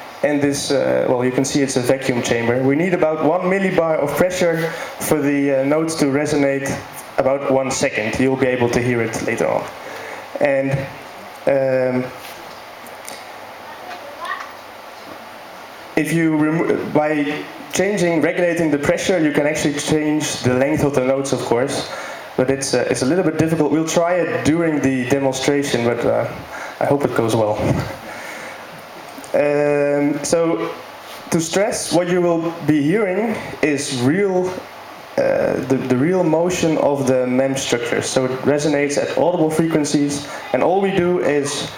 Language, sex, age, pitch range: English, male, 20-39, 130-155 Hz